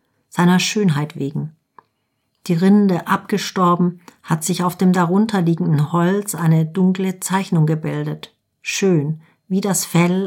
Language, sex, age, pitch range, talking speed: German, female, 50-69, 150-185 Hz, 115 wpm